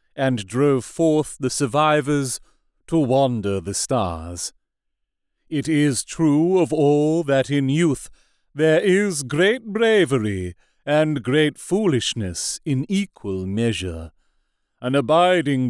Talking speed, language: 110 wpm, English